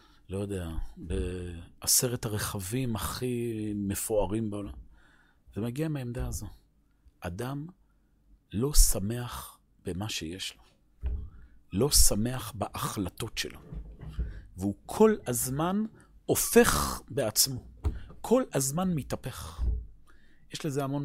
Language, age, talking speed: Hebrew, 40-59, 90 wpm